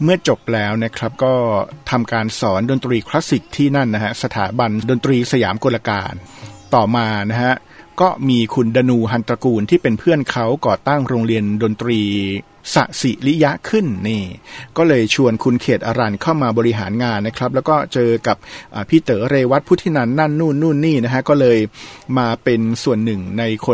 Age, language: 60-79, Thai